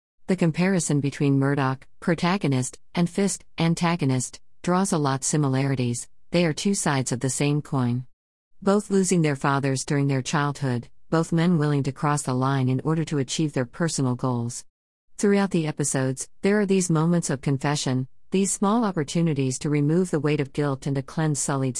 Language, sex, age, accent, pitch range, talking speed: English, female, 50-69, American, 130-170 Hz, 175 wpm